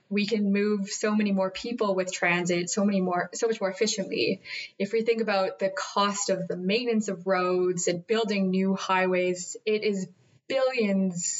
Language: English